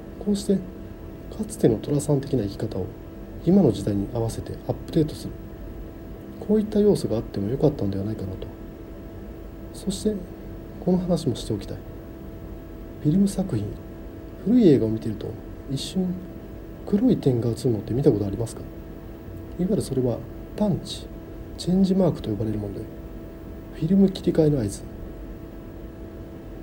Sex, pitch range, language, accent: male, 110-160 Hz, Japanese, native